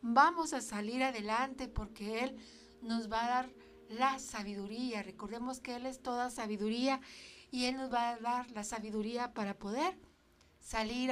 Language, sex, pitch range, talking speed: Spanish, female, 210-270 Hz, 155 wpm